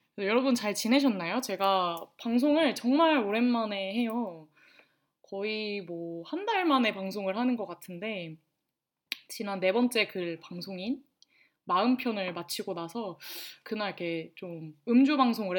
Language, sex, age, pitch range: Korean, female, 20-39, 185-255 Hz